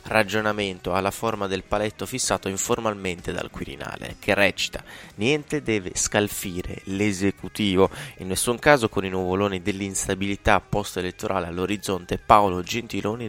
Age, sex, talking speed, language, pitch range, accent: 20-39, male, 115 wpm, Italian, 95-115 Hz, native